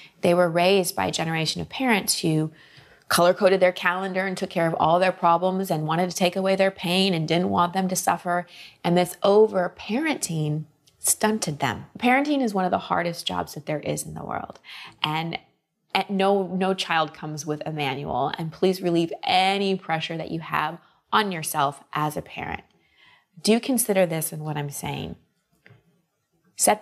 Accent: American